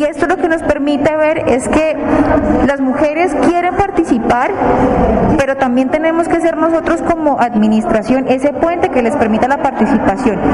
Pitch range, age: 240-295 Hz, 20-39